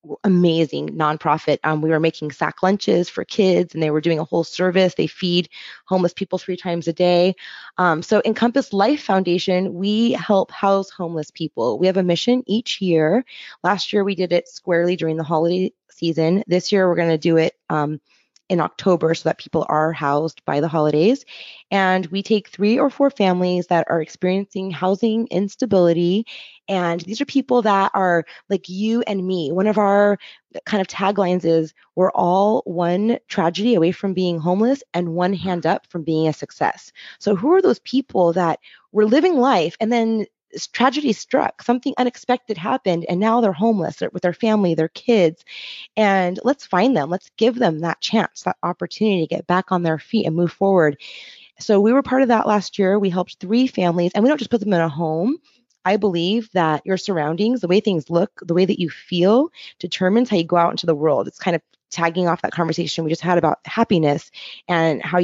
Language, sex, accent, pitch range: English, female, American, 170-215 Hz